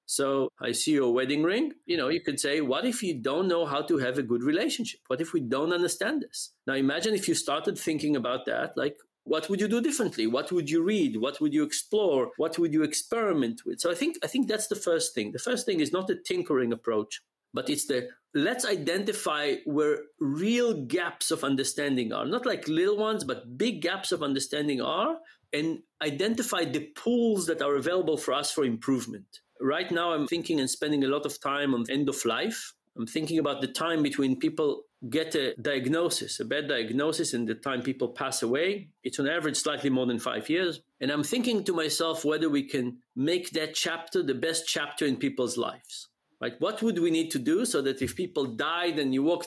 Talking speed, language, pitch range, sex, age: 215 wpm, English, 140-210 Hz, male, 40-59